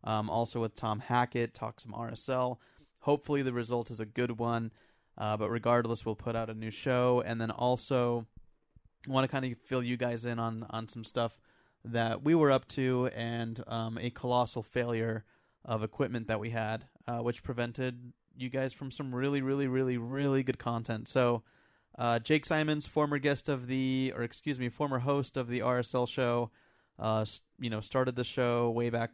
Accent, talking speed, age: American, 195 wpm, 30-49